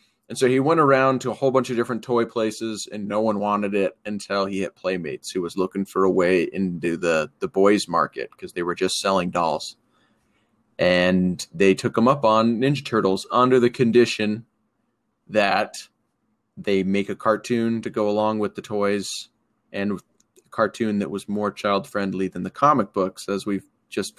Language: English